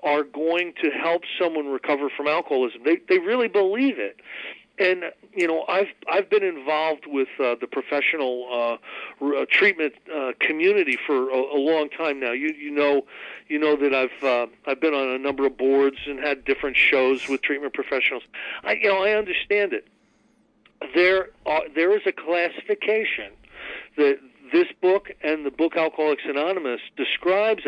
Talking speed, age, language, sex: 170 wpm, 50-69, English, male